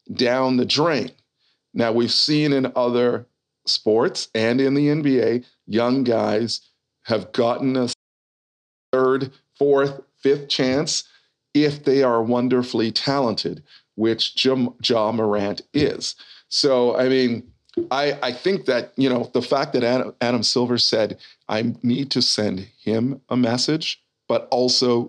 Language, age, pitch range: English, 40-59, 115-135 Hz